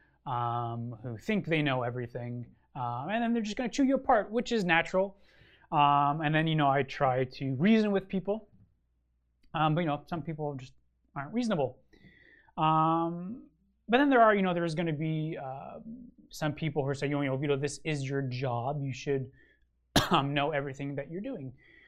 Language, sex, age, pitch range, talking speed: English, male, 20-39, 130-180 Hz, 195 wpm